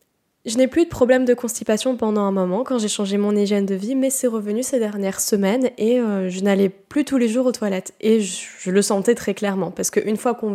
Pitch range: 190-230 Hz